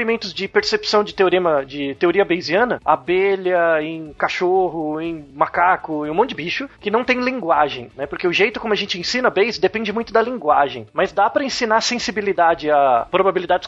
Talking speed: 180 wpm